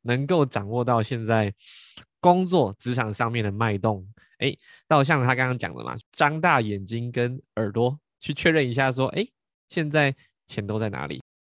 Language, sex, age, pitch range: Chinese, male, 20-39, 110-140 Hz